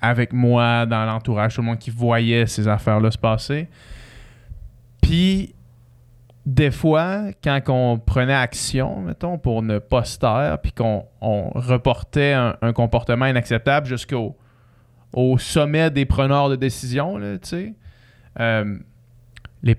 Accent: Canadian